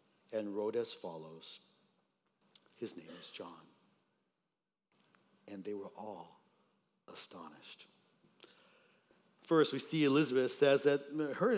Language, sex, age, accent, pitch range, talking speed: English, male, 50-69, American, 105-160 Hz, 105 wpm